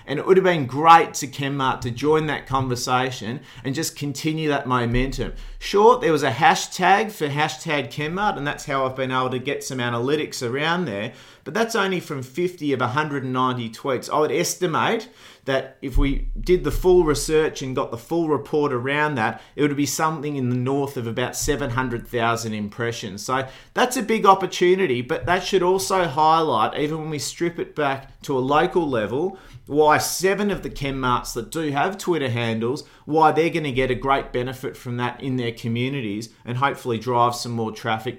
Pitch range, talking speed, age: 125-160 Hz, 190 wpm, 30-49